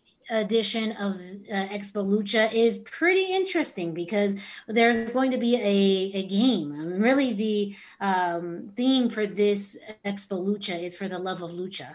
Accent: American